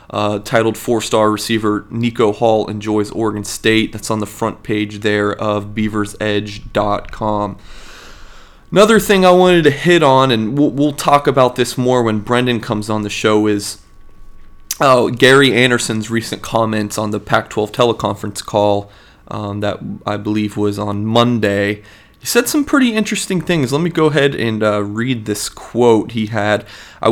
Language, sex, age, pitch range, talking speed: English, male, 30-49, 105-130 Hz, 165 wpm